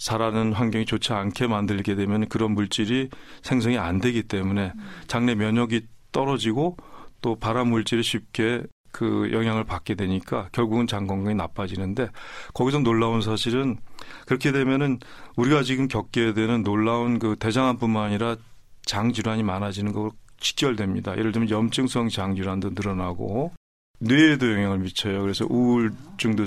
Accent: native